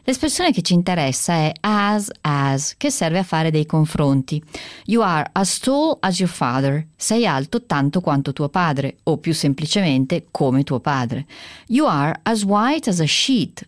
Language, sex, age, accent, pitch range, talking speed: Italian, female, 40-59, native, 140-200 Hz, 170 wpm